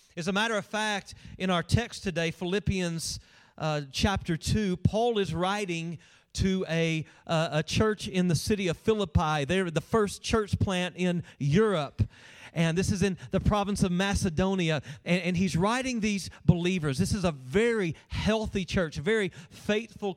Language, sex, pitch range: English, male, 160-200 Hz